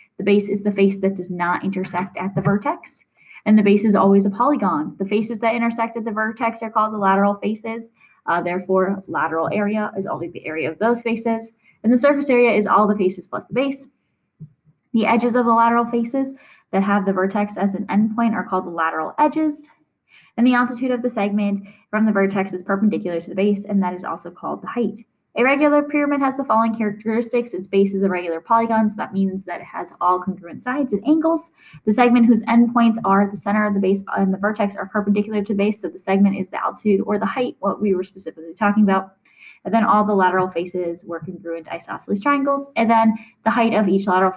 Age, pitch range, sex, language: 10-29, 190-230 Hz, female, English